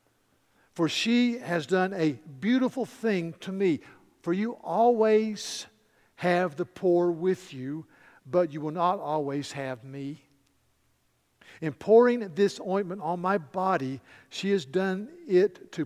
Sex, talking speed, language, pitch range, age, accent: male, 135 wpm, English, 145-205 Hz, 50-69, American